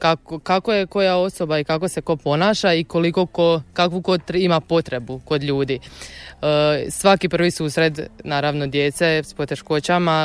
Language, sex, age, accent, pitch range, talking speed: Croatian, female, 20-39, native, 150-175 Hz, 170 wpm